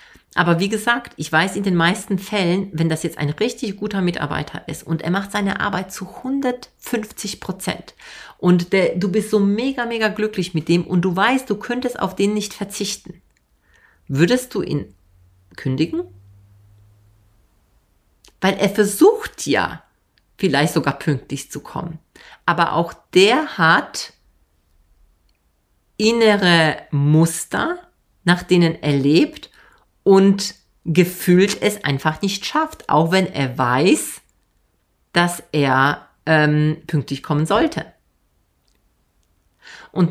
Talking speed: 125 wpm